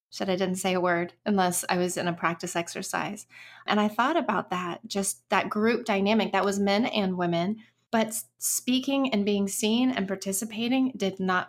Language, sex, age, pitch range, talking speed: English, female, 30-49, 185-220 Hz, 190 wpm